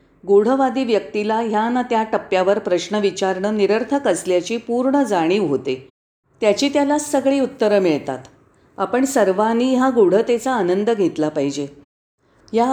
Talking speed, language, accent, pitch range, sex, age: 125 wpm, Marathi, native, 180-240 Hz, female, 40-59